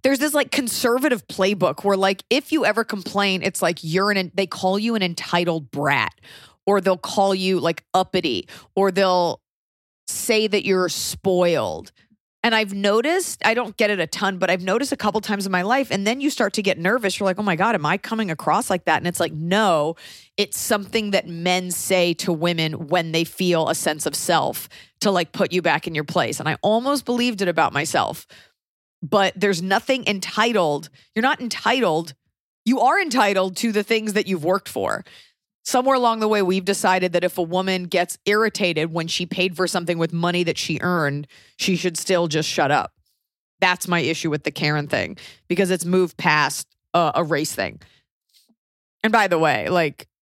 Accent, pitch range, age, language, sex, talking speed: American, 165-210 Hz, 30-49, English, female, 200 wpm